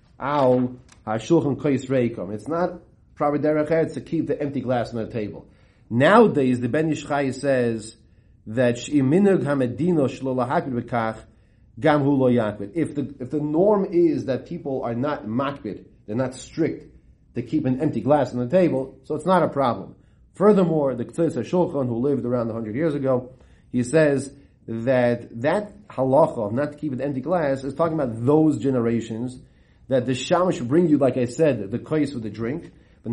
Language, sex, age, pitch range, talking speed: English, male, 30-49, 115-150 Hz, 150 wpm